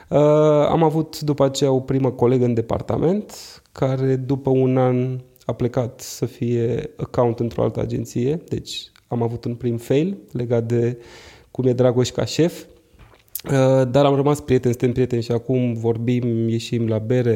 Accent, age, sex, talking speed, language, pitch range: native, 20-39, male, 165 wpm, Romanian, 120-150 Hz